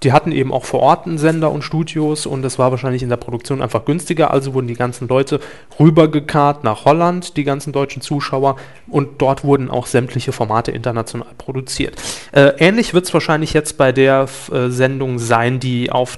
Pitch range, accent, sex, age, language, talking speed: 130-155 Hz, German, male, 30-49, German, 195 wpm